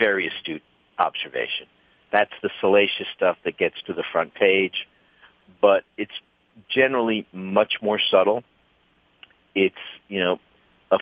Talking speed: 125 wpm